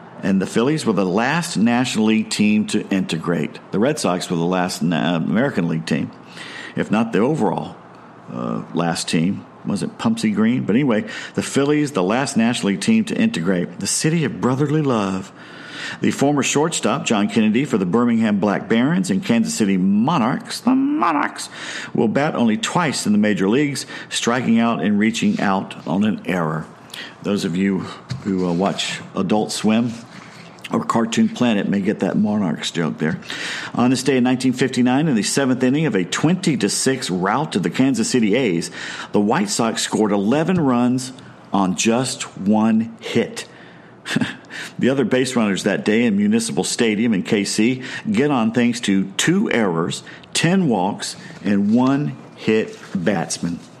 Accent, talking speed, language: American, 165 wpm, English